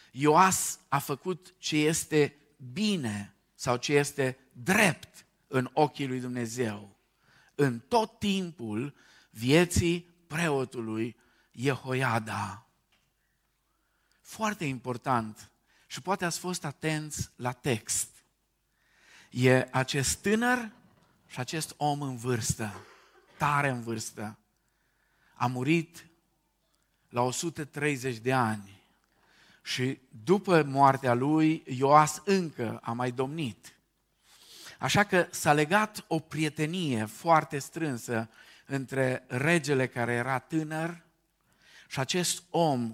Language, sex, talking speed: Romanian, male, 100 wpm